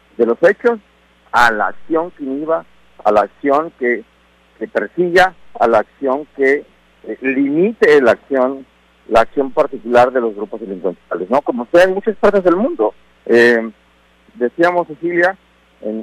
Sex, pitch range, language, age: male, 110-175 Hz, Spanish, 50-69